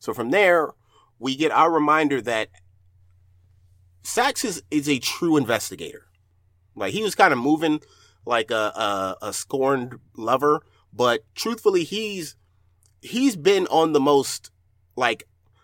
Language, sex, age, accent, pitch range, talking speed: English, male, 30-49, American, 95-155 Hz, 135 wpm